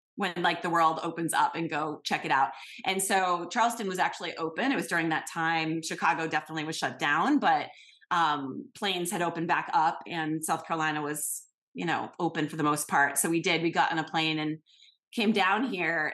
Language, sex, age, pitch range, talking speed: English, female, 30-49, 165-210 Hz, 210 wpm